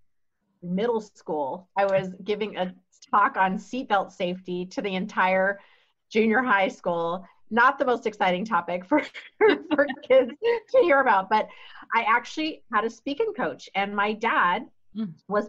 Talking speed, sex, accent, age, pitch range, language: 145 wpm, female, American, 30-49, 195-255 Hz, English